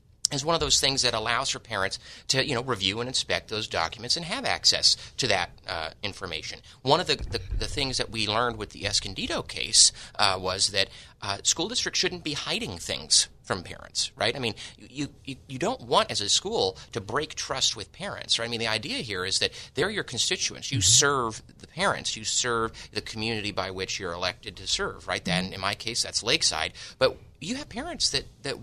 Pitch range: 95-130 Hz